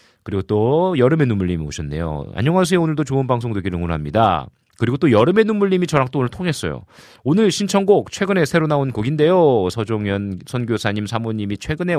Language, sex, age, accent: Korean, male, 40-59, native